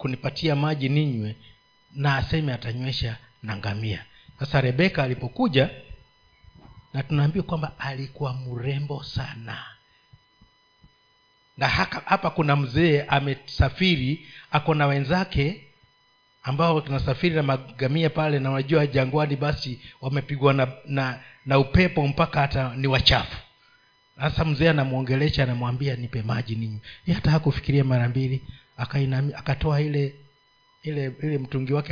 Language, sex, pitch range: Swahili, male, 125-150 Hz